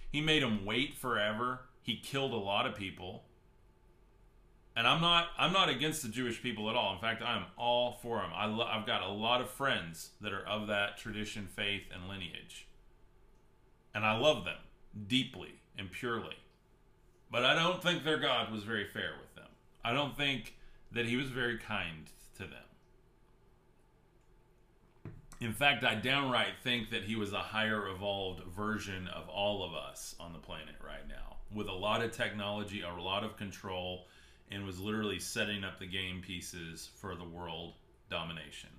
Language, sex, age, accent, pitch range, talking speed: English, male, 30-49, American, 100-125 Hz, 175 wpm